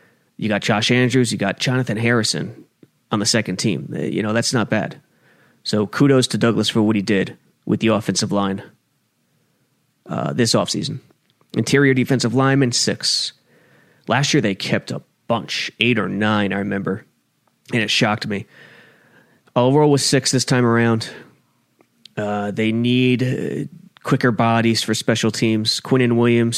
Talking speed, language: 155 wpm, English